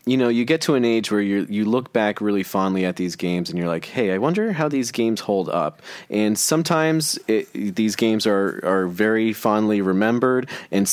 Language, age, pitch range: English, 30-49, 95-115 Hz